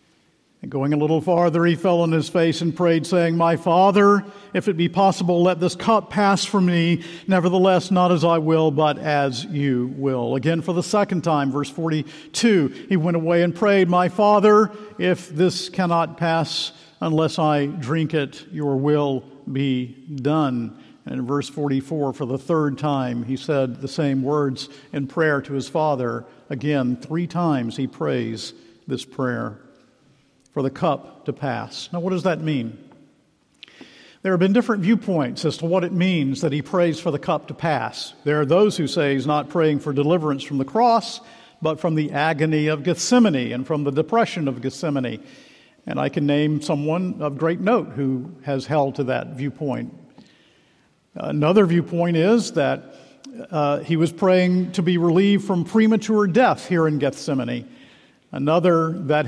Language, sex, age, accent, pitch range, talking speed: English, male, 50-69, American, 140-180 Hz, 175 wpm